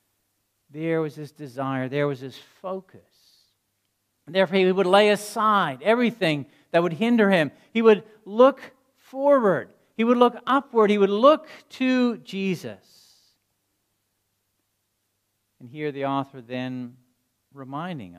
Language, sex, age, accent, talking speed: English, male, 50-69, American, 120 wpm